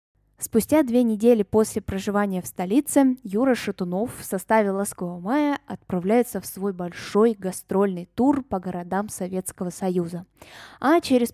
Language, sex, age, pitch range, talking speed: Russian, female, 10-29, 185-240 Hz, 130 wpm